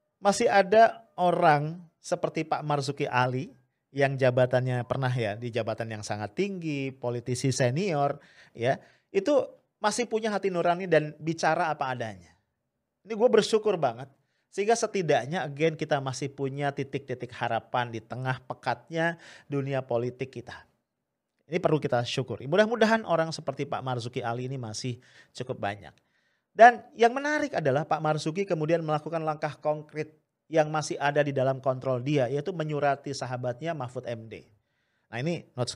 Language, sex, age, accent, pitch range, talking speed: English, male, 40-59, Indonesian, 130-175 Hz, 145 wpm